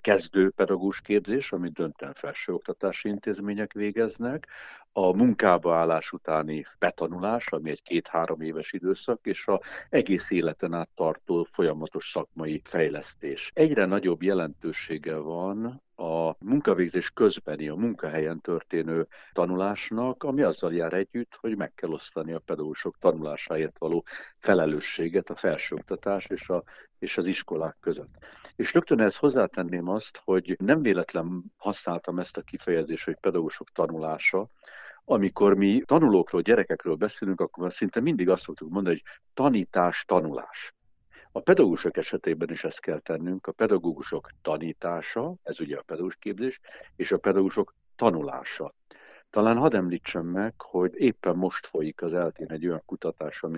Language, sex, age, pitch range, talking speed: Hungarian, male, 60-79, 80-100 Hz, 135 wpm